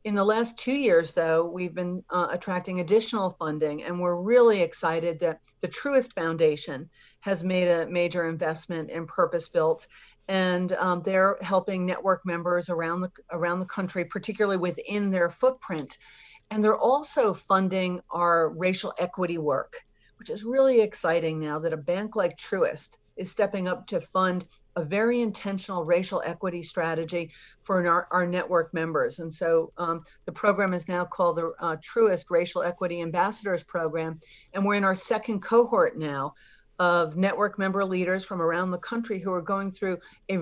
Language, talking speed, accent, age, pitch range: English, 165 wpm, American, 40-59, 170-200 Hz